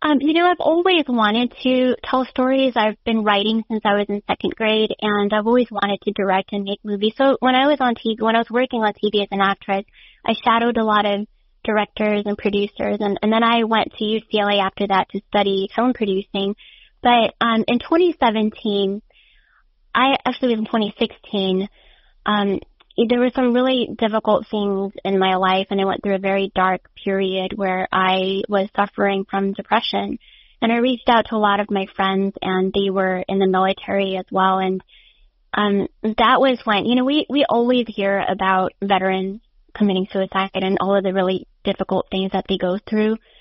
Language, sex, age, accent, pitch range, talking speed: English, female, 20-39, American, 195-230 Hz, 200 wpm